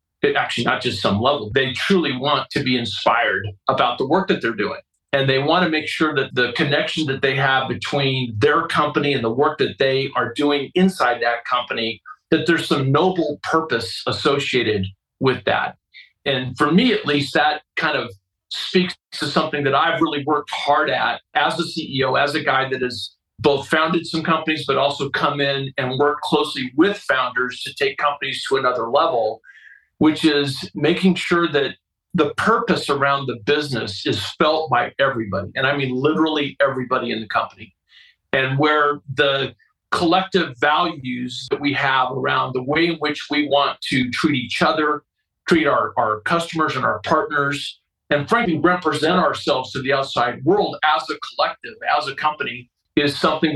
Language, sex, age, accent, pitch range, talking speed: English, male, 40-59, American, 130-155 Hz, 175 wpm